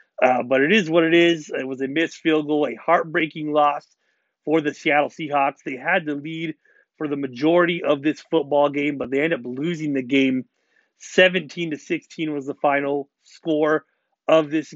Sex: male